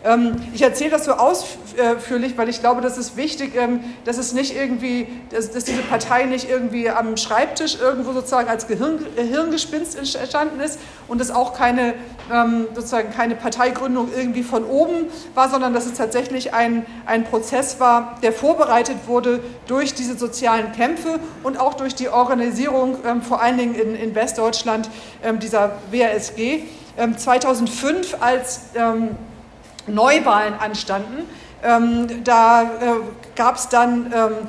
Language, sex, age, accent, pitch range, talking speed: German, female, 50-69, German, 230-255 Hz, 135 wpm